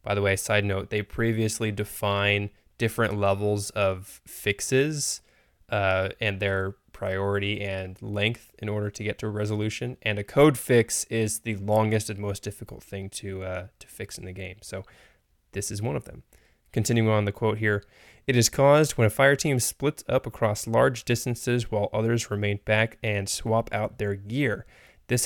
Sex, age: male, 20-39